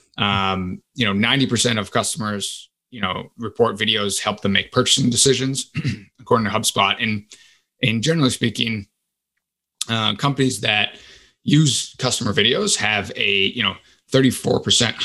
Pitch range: 100-130 Hz